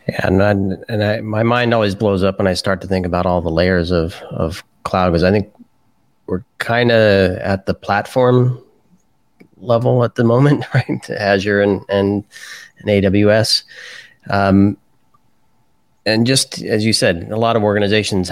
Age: 30-49